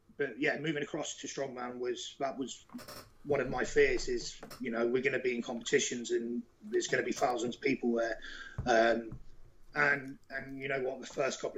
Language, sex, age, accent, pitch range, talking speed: English, male, 30-49, British, 115-145 Hz, 205 wpm